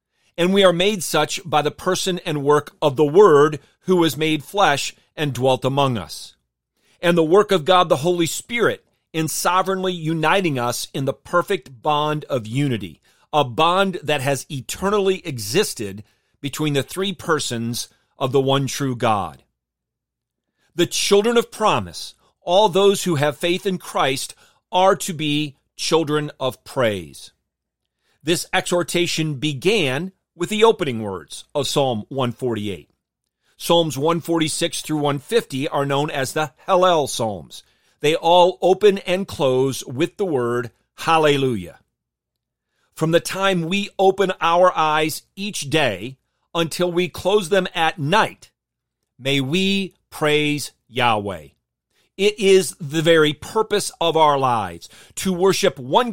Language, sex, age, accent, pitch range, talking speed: English, male, 40-59, American, 130-180 Hz, 140 wpm